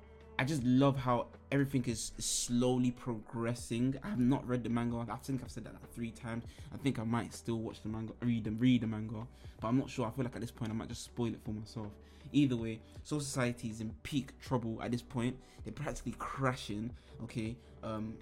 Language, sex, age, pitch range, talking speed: English, male, 20-39, 110-125 Hz, 220 wpm